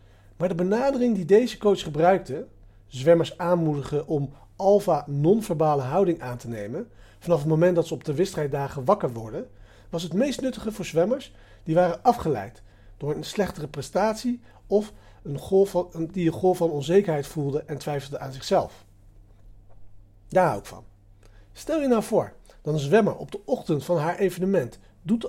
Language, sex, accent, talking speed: Dutch, male, Dutch, 160 wpm